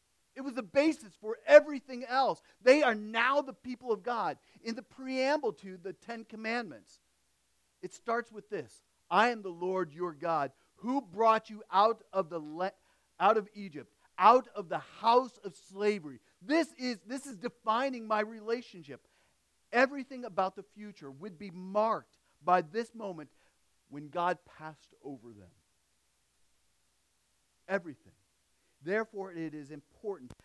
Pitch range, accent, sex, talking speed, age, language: 155-230 Hz, American, male, 145 wpm, 40-59, English